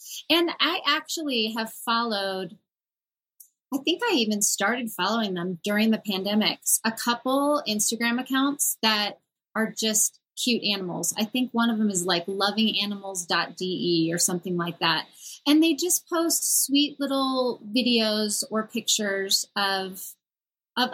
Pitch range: 195-245 Hz